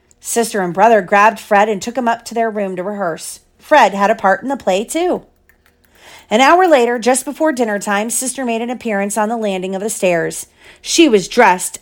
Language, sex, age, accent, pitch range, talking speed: English, female, 40-59, American, 185-240 Hz, 215 wpm